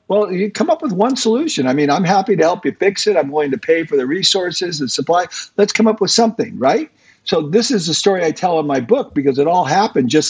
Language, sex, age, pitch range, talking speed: English, male, 50-69, 145-195 Hz, 270 wpm